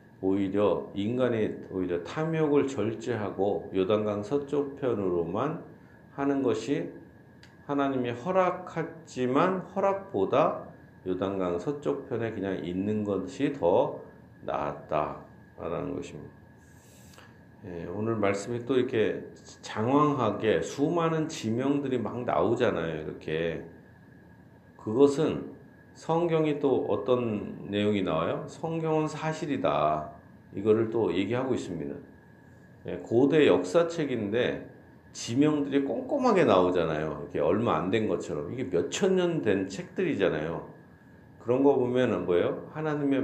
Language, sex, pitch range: Korean, male, 95-150 Hz